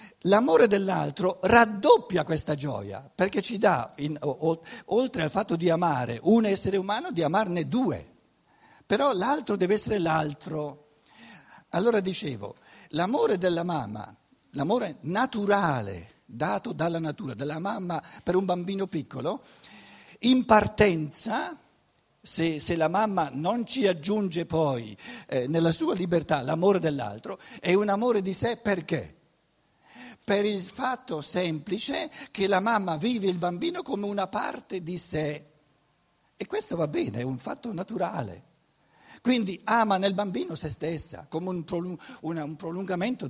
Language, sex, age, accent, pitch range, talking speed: Italian, male, 60-79, native, 155-210 Hz, 130 wpm